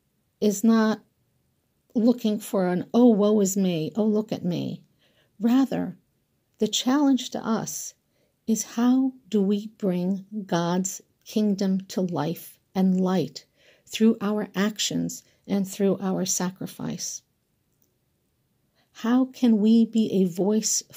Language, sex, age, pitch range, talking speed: English, female, 50-69, 185-225 Hz, 120 wpm